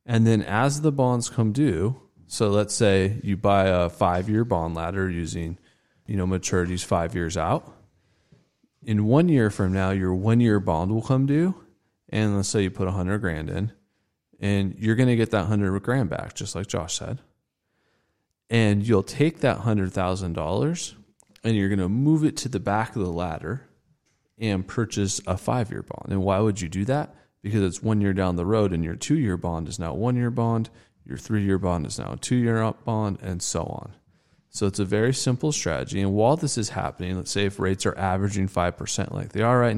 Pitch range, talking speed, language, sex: 90-115 Hz, 205 wpm, English, male